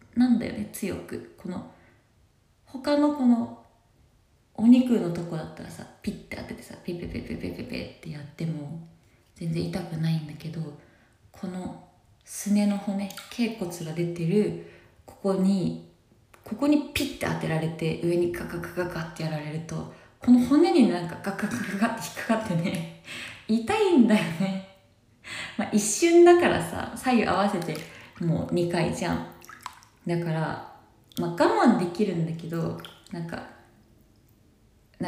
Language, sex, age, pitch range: Japanese, female, 20-39, 165-235 Hz